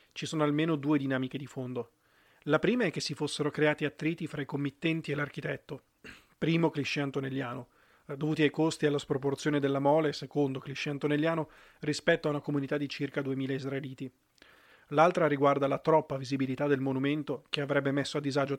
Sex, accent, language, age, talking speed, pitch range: male, native, Italian, 30-49, 175 wpm, 135-150 Hz